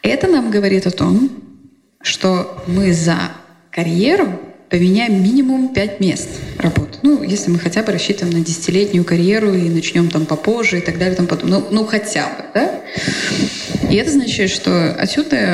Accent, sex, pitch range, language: native, female, 175-210 Hz, Ukrainian